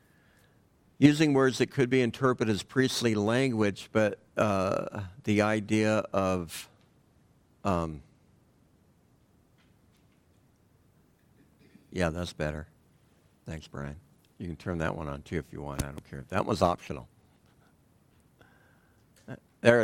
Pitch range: 90-130 Hz